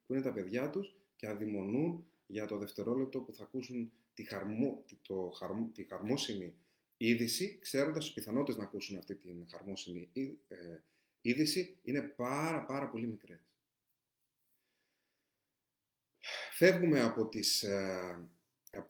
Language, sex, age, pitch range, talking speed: Greek, male, 30-49, 100-155 Hz, 125 wpm